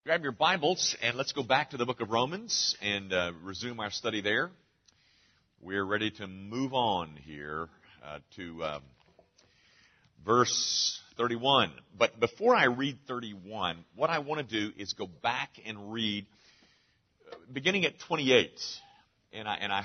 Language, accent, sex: English, American, male